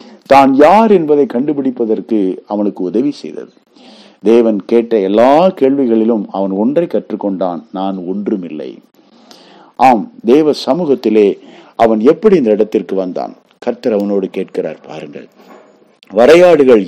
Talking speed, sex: 105 wpm, male